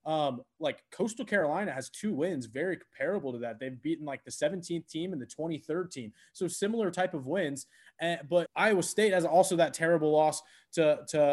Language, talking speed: English, 195 wpm